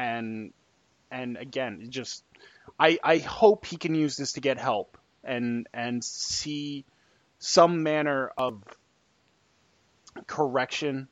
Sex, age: male, 20-39